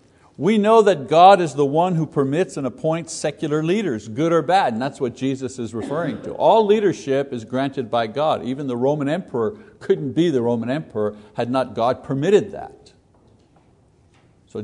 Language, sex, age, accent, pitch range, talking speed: English, male, 60-79, American, 130-180 Hz, 180 wpm